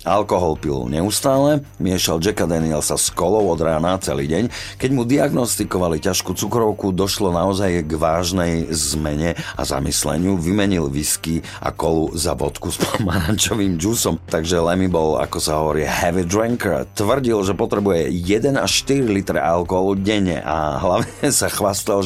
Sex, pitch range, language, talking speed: male, 80-105 Hz, Slovak, 145 wpm